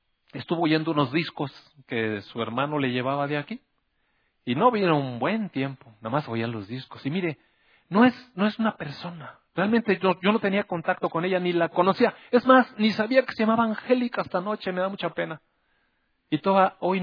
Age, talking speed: 40-59, 205 wpm